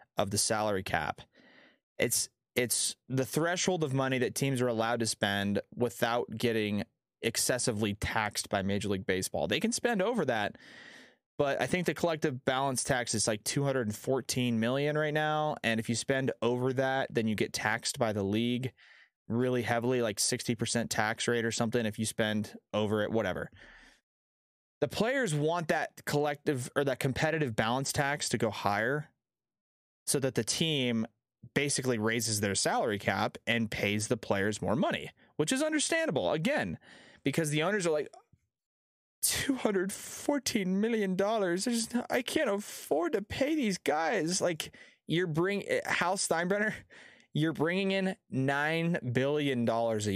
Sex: male